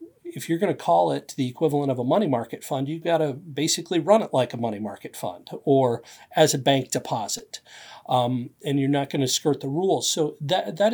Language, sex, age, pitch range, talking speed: English, male, 40-59, 130-165 Hz, 225 wpm